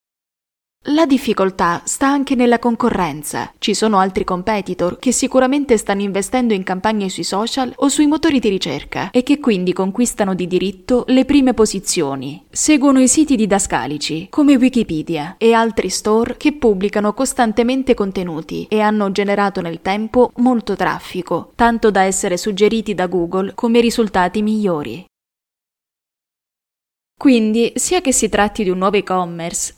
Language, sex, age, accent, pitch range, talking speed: Italian, female, 20-39, native, 185-250 Hz, 140 wpm